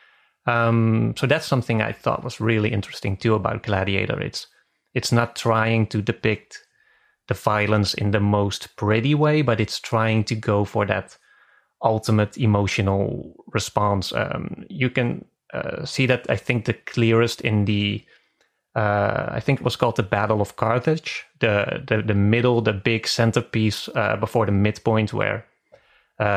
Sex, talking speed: male, 160 wpm